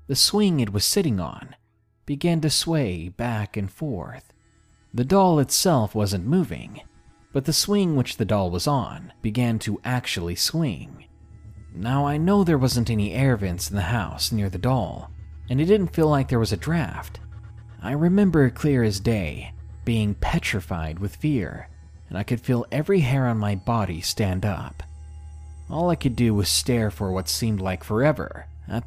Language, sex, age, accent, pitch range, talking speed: English, male, 30-49, American, 90-130 Hz, 175 wpm